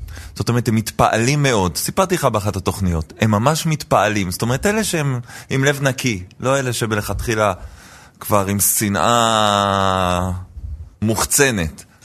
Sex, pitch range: male, 95-140 Hz